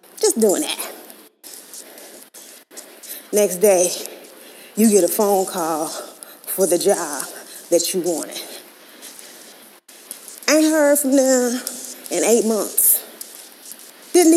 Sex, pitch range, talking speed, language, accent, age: female, 220-335 Hz, 95 wpm, English, American, 30-49